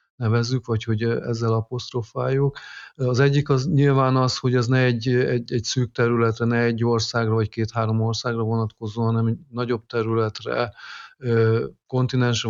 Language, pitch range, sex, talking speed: Hungarian, 115-130 Hz, male, 145 wpm